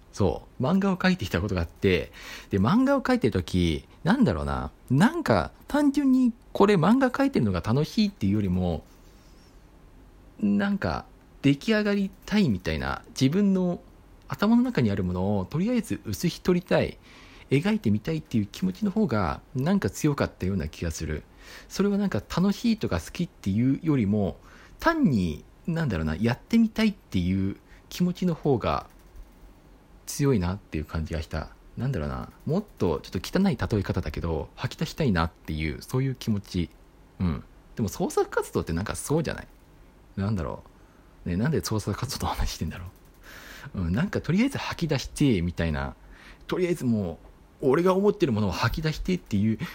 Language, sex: Japanese, male